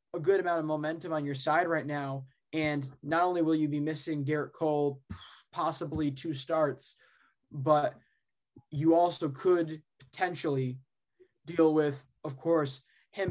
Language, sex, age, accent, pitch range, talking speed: English, male, 20-39, American, 145-160 Hz, 145 wpm